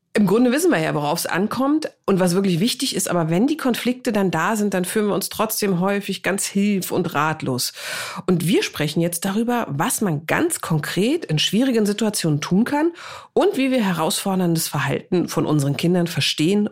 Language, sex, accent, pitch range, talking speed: German, female, German, 160-240 Hz, 190 wpm